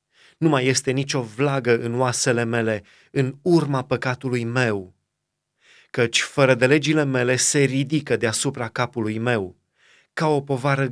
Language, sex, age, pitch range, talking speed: Romanian, male, 30-49, 120-145 Hz, 135 wpm